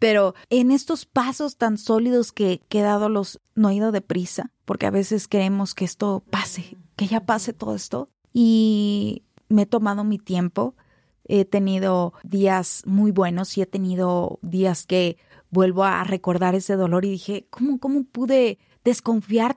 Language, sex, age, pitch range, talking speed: Spanish, female, 30-49, 185-220 Hz, 165 wpm